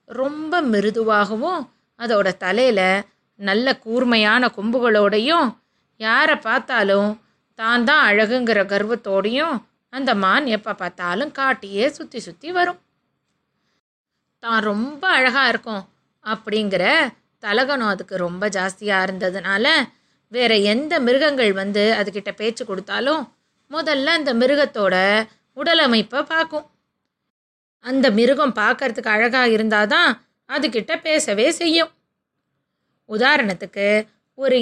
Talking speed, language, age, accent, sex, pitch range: 90 wpm, Tamil, 20-39, native, female, 215-290 Hz